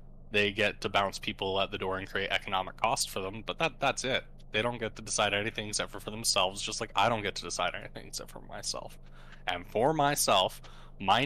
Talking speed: 225 wpm